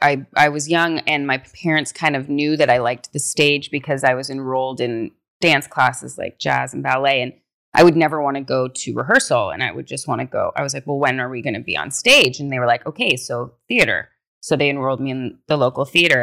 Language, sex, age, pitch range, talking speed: English, female, 30-49, 125-155 Hz, 255 wpm